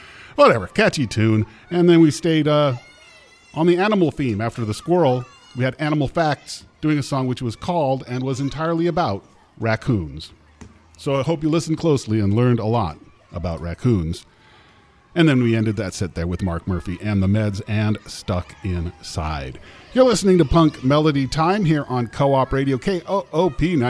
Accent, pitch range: American, 115-155 Hz